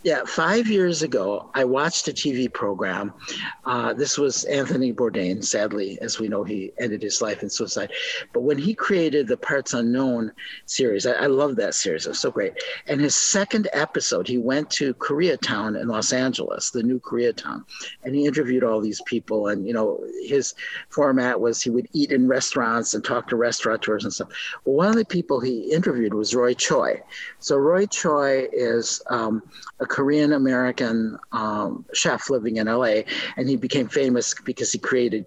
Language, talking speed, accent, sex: English, 185 wpm, American, male